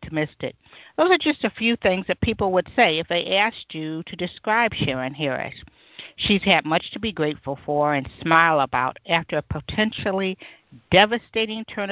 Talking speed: 175 wpm